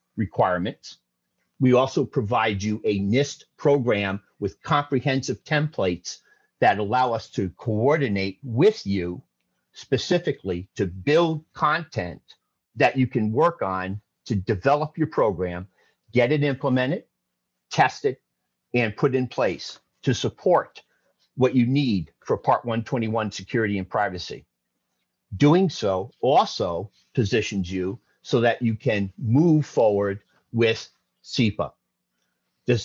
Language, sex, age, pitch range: English, male, 50-69, 95-135 Hz